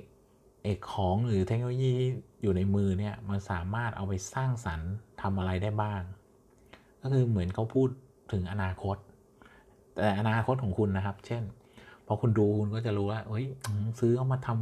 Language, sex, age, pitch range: Thai, male, 20-39, 95-120 Hz